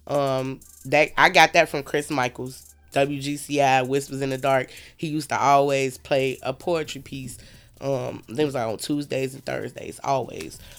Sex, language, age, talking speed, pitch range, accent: female, English, 20-39, 160 wpm, 140-175 Hz, American